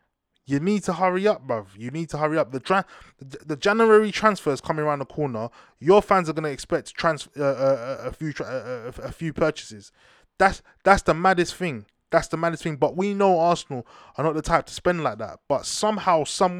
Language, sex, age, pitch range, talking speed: English, male, 20-39, 130-180 Hz, 230 wpm